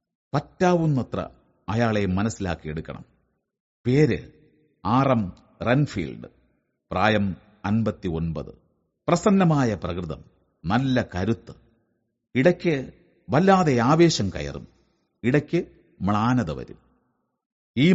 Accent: native